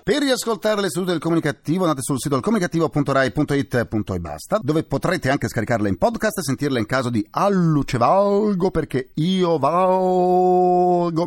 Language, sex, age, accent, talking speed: Italian, male, 40-59, native, 140 wpm